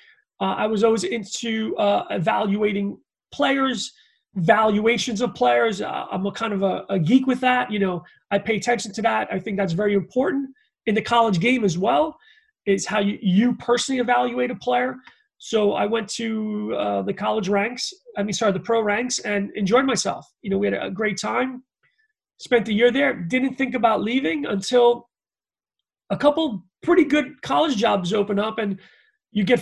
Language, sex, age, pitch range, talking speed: English, male, 30-49, 200-250 Hz, 185 wpm